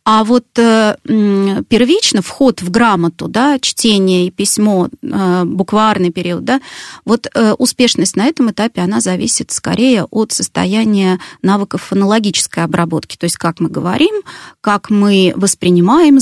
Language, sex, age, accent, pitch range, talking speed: Russian, female, 30-49, native, 185-250 Hz, 125 wpm